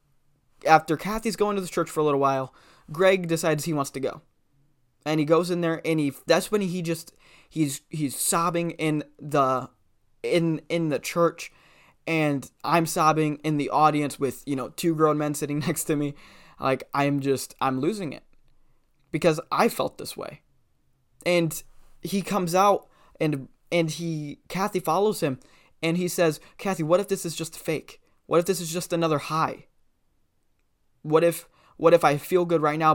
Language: English